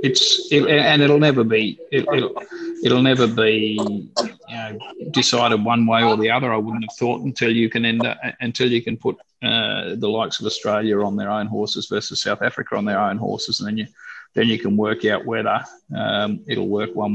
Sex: male